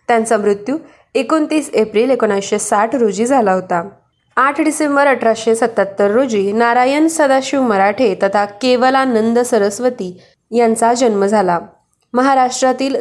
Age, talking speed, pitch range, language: 20-39, 110 wpm, 205-260 Hz, Marathi